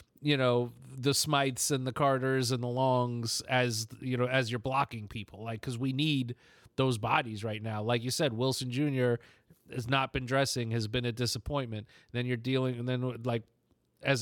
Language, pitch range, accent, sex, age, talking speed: English, 125-145 Hz, American, male, 30-49, 195 wpm